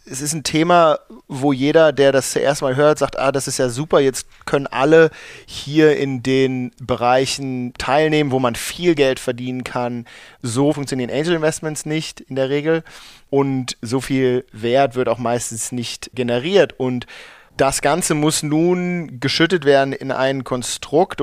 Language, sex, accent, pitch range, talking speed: German, male, German, 125-150 Hz, 165 wpm